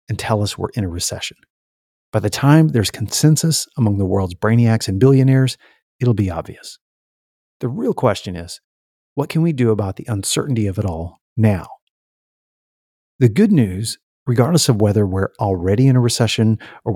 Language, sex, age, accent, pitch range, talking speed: English, male, 50-69, American, 95-130 Hz, 170 wpm